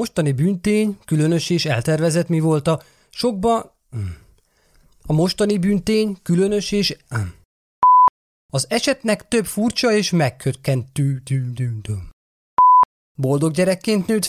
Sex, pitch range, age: male, 135-210 Hz, 30-49